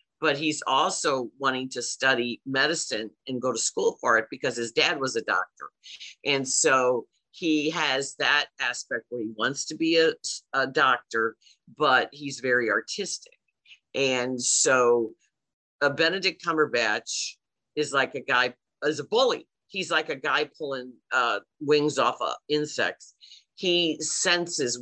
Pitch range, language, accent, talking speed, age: 120-155 Hz, English, American, 145 wpm, 50-69